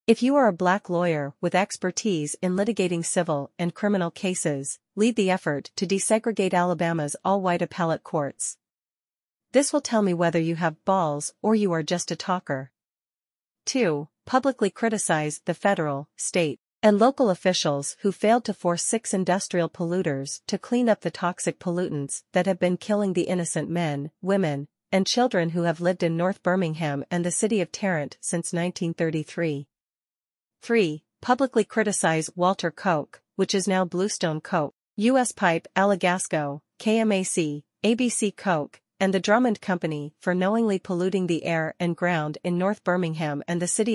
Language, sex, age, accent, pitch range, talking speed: English, female, 40-59, American, 165-200 Hz, 155 wpm